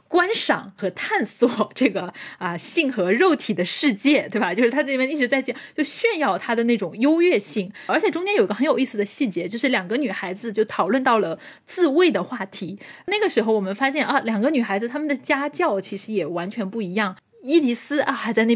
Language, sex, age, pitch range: Chinese, female, 10-29, 200-290 Hz